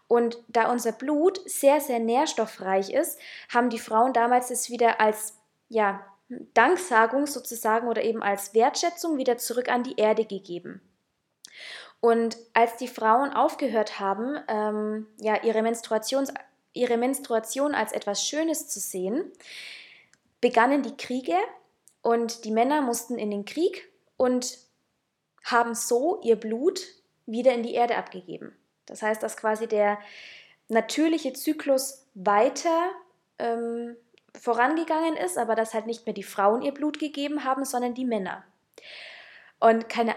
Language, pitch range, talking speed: German, 220-270 Hz, 135 wpm